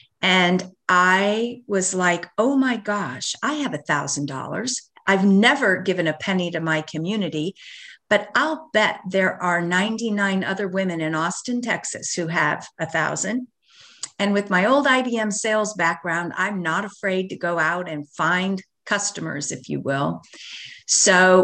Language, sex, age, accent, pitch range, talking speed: English, female, 50-69, American, 160-200 Hz, 145 wpm